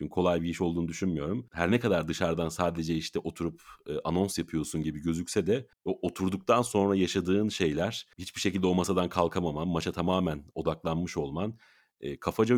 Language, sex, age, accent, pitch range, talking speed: Turkish, male, 40-59, native, 80-100 Hz, 155 wpm